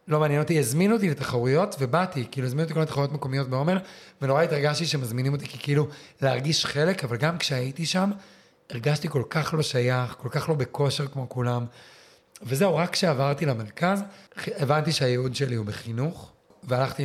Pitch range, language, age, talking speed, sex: 125-160 Hz, Hebrew, 30-49, 165 wpm, male